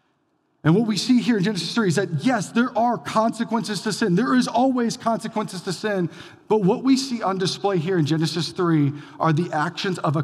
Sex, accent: male, American